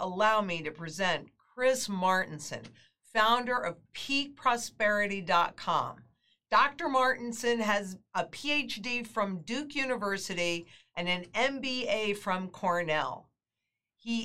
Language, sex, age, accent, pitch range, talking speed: English, female, 50-69, American, 175-255 Hz, 95 wpm